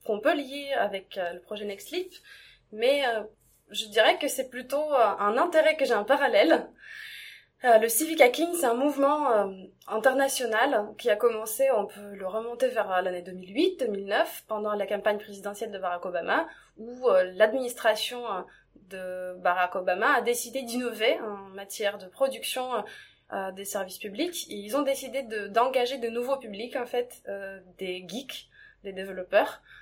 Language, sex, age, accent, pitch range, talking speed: French, female, 20-39, French, 200-260 Hz, 165 wpm